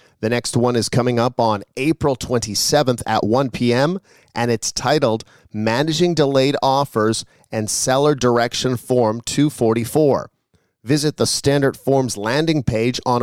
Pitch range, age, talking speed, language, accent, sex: 115-145 Hz, 40-59, 135 wpm, English, American, male